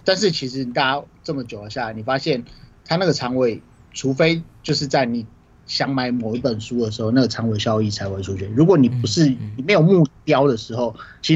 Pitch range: 115-150 Hz